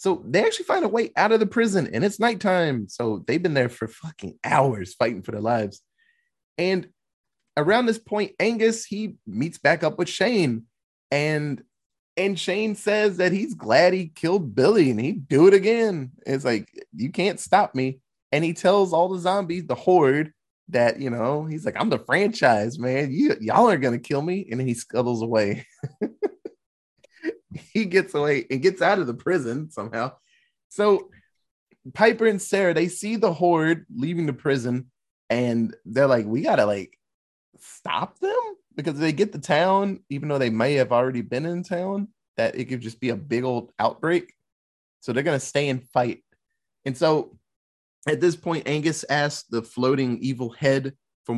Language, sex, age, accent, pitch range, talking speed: English, male, 20-39, American, 130-195 Hz, 180 wpm